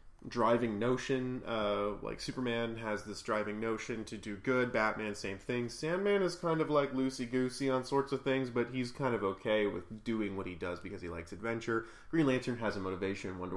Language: English